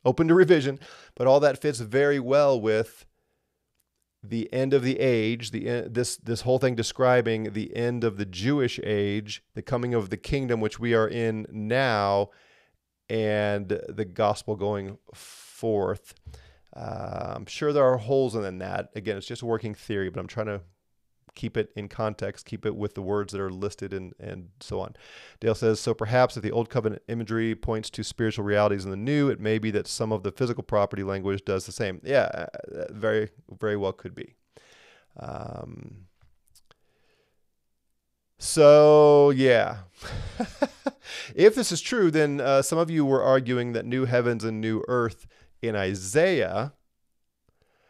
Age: 30-49